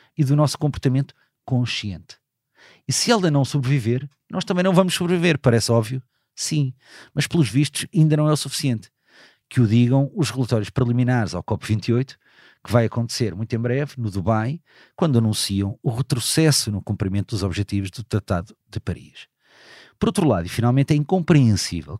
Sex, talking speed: male, 165 wpm